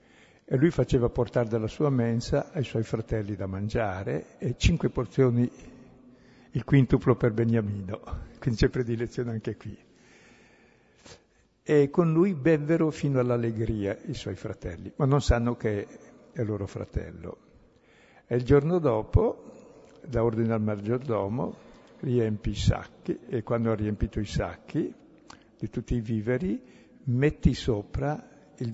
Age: 60-79